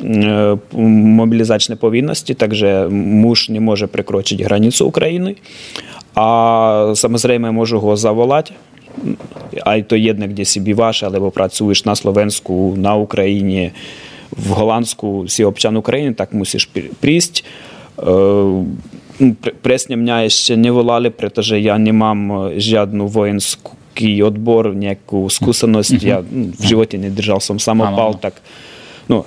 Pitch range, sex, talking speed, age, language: 100-115 Hz, male, 125 wpm, 20-39, Slovak